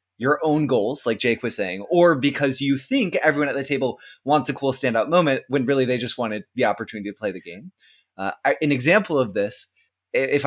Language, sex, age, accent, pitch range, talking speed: English, male, 20-39, American, 115-155 Hz, 210 wpm